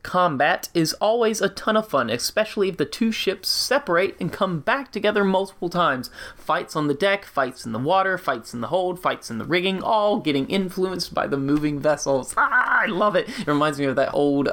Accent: American